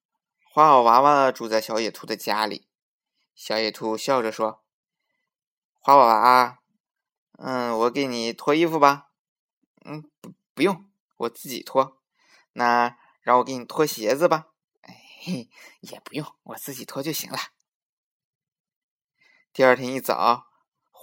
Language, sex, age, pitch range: Chinese, male, 20-39, 115-160 Hz